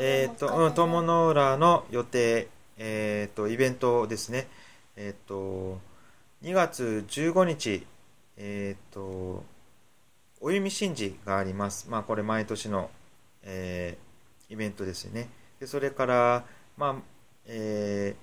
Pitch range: 100-140 Hz